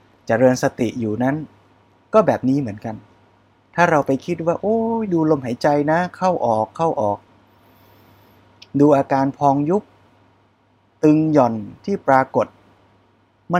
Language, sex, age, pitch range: Thai, male, 20-39, 105-140 Hz